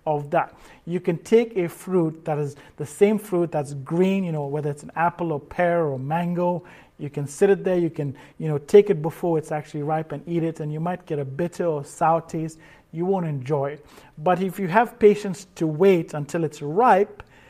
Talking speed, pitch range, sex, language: 225 wpm, 155-190 Hz, male, English